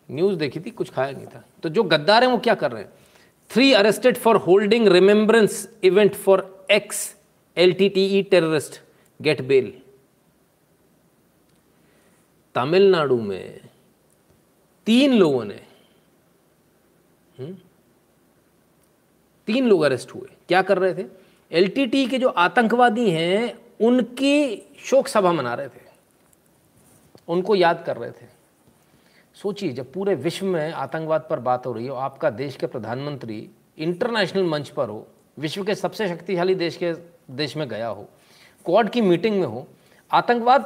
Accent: native